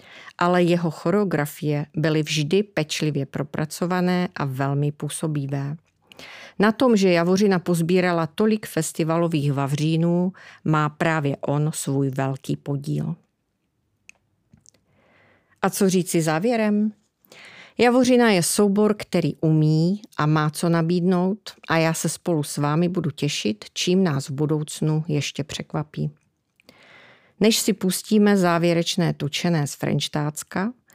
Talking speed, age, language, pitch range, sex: 110 wpm, 40-59, Czech, 150-185 Hz, female